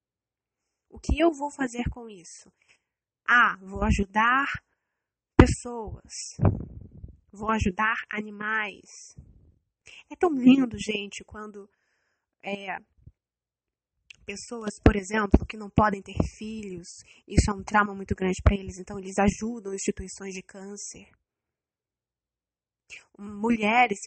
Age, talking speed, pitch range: 20-39, 105 wpm, 200-245 Hz